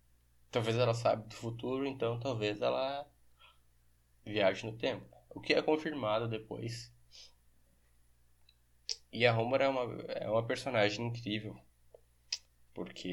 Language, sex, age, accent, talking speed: Portuguese, male, 10-29, Brazilian, 120 wpm